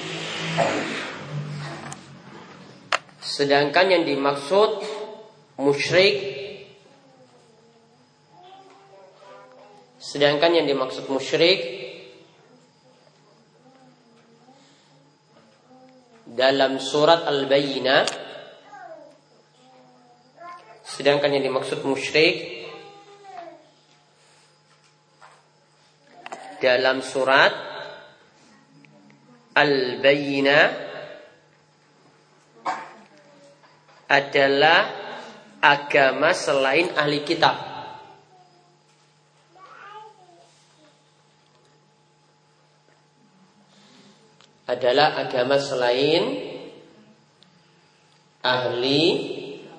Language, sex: Malay, male